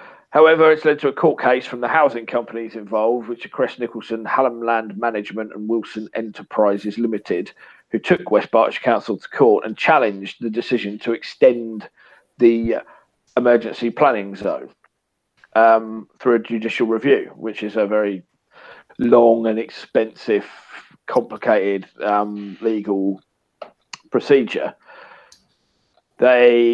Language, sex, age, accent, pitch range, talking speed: English, male, 40-59, British, 110-120 Hz, 130 wpm